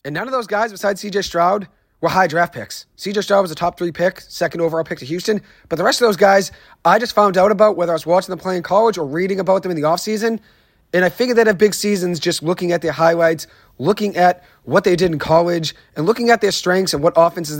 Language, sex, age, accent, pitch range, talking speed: English, male, 30-49, American, 165-205 Hz, 265 wpm